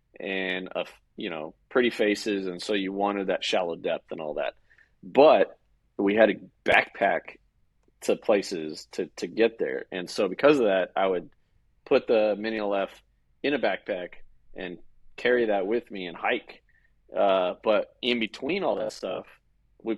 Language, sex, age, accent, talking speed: English, male, 30-49, American, 170 wpm